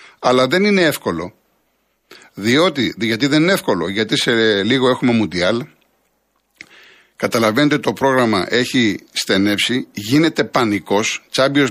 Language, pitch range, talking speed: Greek, 110-155 Hz, 115 wpm